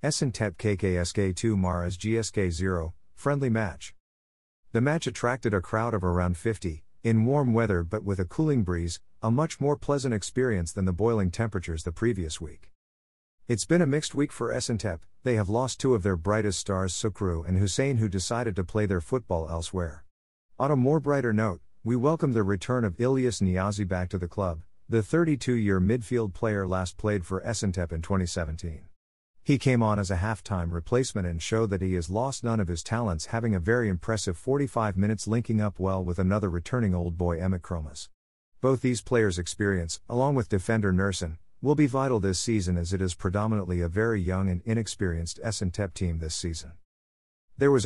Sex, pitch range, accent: male, 90-115 Hz, American